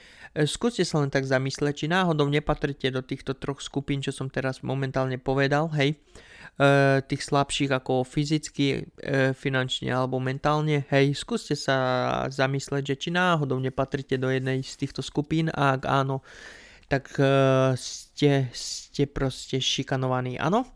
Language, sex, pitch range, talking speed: Slovak, male, 130-150 Hz, 135 wpm